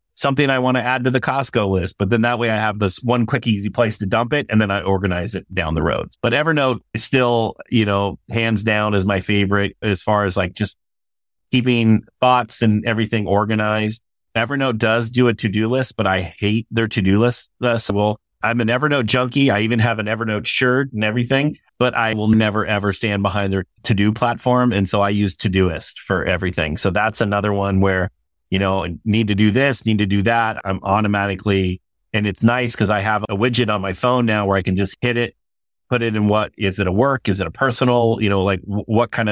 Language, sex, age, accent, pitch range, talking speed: English, male, 30-49, American, 100-115 Hz, 225 wpm